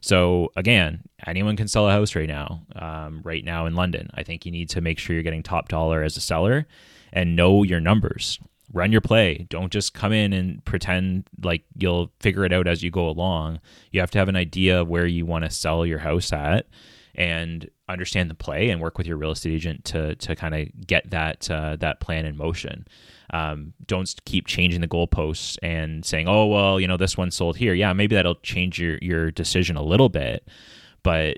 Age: 20-39